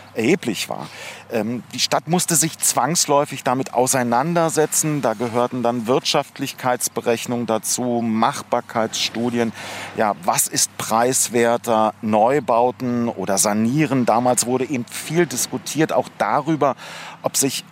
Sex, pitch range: male, 110-145 Hz